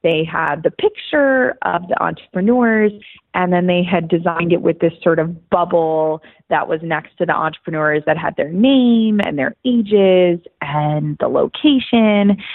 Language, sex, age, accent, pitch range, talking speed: English, female, 20-39, American, 155-195 Hz, 165 wpm